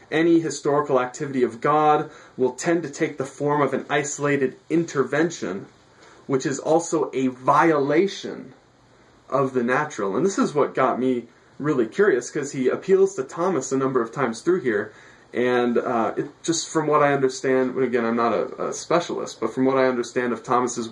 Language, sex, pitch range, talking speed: English, male, 115-140 Hz, 180 wpm